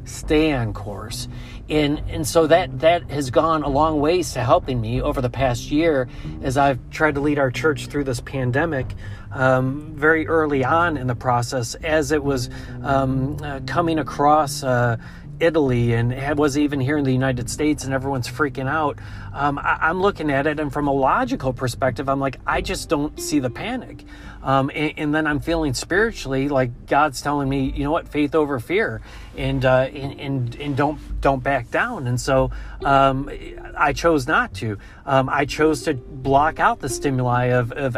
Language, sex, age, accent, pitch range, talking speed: English, male, 40-59, American, 125-150 Hz, 190 wpm